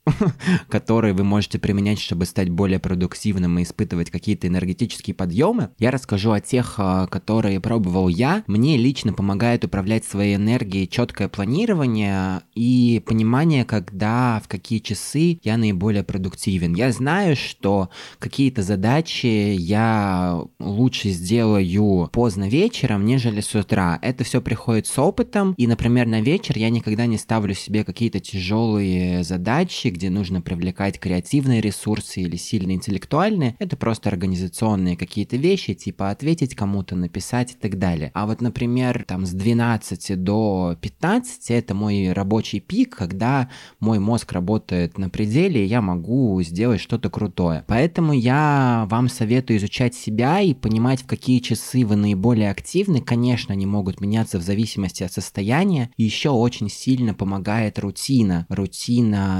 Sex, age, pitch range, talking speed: male, 20-39, 100-120 Hz, 140 wpm